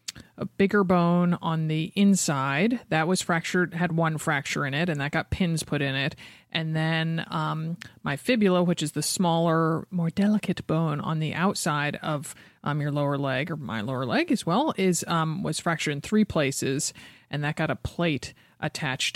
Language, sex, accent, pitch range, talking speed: English, male, American, 155-185 Hz, 190 wpm